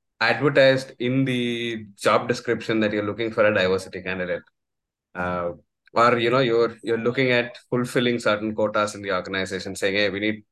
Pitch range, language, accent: 100-120 Hz, English, Indian